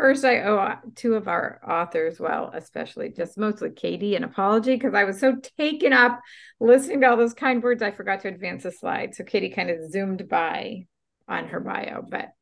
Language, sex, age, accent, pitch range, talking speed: English, female, 40-59, American, 180-245 Hz, 205 wpm